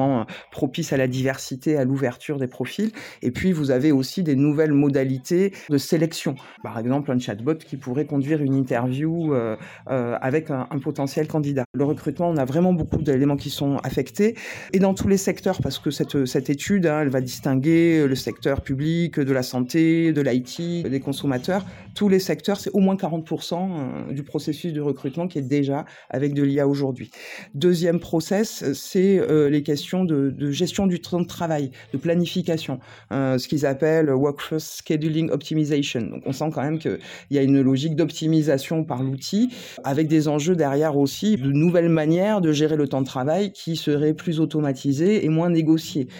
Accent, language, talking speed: French, French, 180 wpm